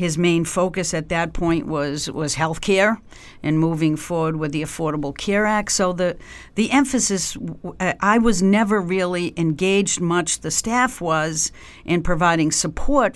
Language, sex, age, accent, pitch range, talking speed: English, female, 50-69, American, 160-195 Hz, 155 wpm